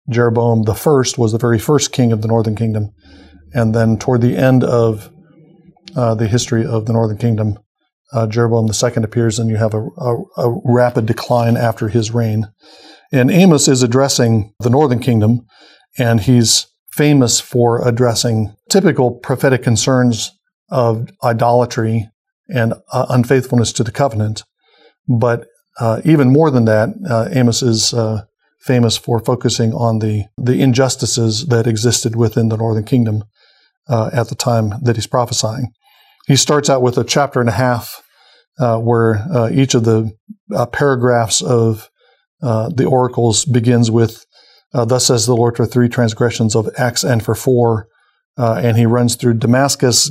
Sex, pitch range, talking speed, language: male, 115-125 Hz, 160 wpm, English